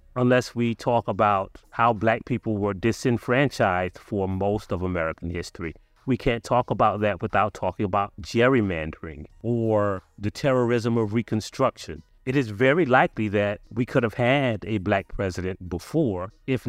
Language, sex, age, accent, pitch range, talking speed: English, male, 30-49, American, 100-120 Hz, 150 wpm